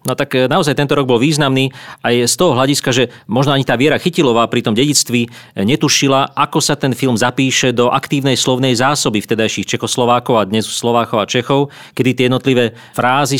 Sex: male